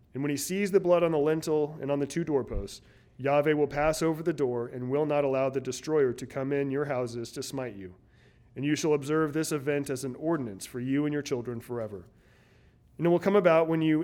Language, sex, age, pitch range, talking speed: English, male, 30-49, 125-155 Hz, 240 wpm